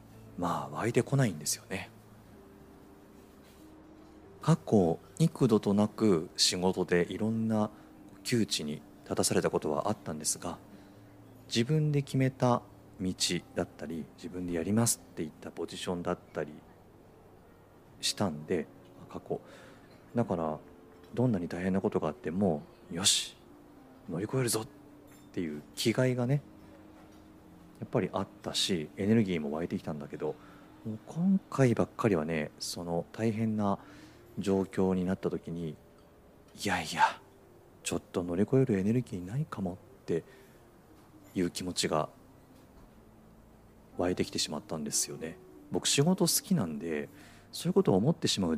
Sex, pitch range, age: male, 90-130 Hz, 40-59